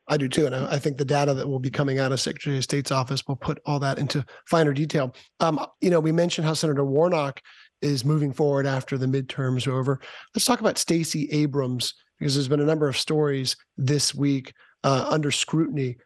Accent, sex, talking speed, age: American, male, 215 wpm, 40-59